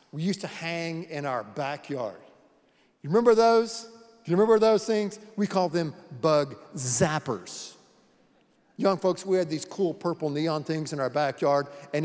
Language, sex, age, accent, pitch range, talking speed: English, male, 50-69, American, 155-220 Hz, 165 wpm